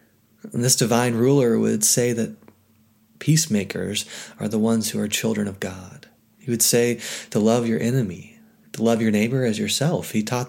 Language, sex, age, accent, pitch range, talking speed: English, male, 30-49, American, 105-125 Hz, 175 wpm